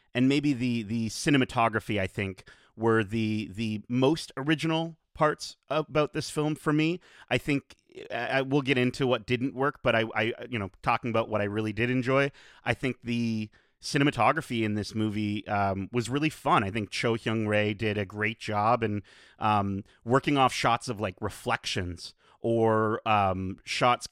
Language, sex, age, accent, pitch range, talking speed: English, male, 30-49, American, 105-135 Hz, 175 wpm